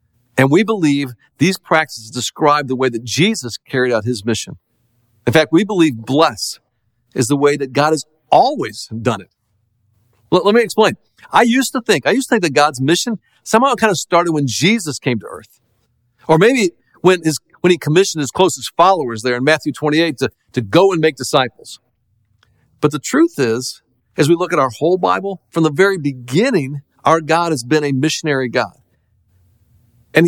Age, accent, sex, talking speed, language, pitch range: 50-69, American, male, 185 wpm, English, 120-170 Hz